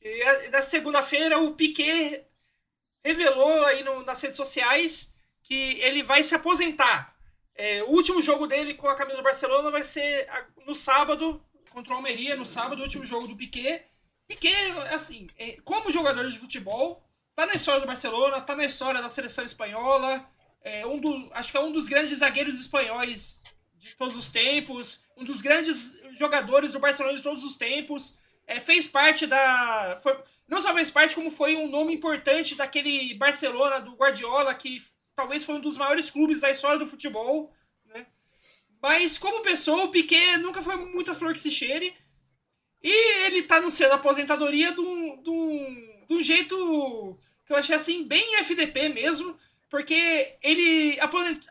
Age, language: 20-39, Portuguese